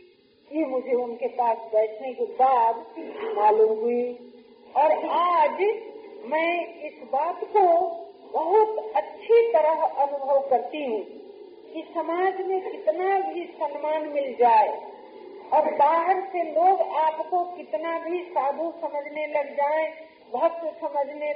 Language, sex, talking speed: Hindi, female, 120 wpm